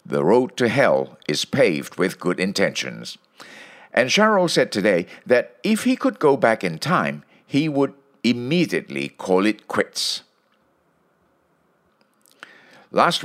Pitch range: 100-165 Hz